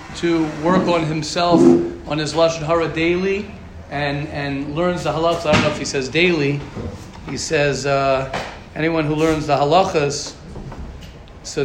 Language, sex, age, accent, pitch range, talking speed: English, male, 40-59, American, 105-165 Hz, 150 wpm